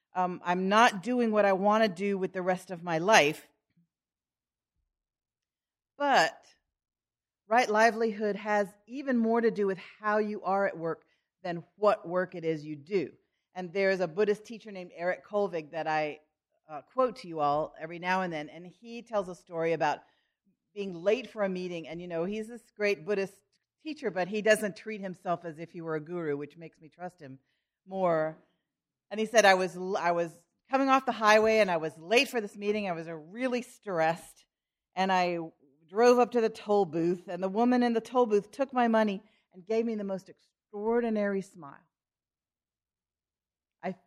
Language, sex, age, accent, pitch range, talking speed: English, female, 40-59, American, 170-220 Hz, 190 wpm